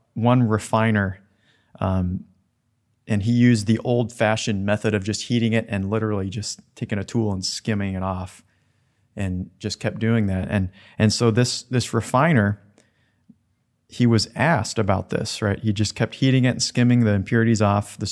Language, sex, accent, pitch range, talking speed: English, male, American, 100-120 Hz, 170 wpm